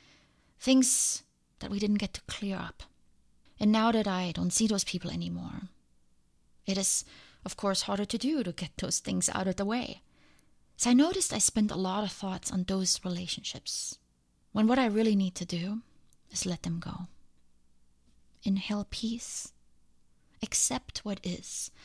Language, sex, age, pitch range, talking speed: English, female, 20-39, 175-220 Hz, 165 wpm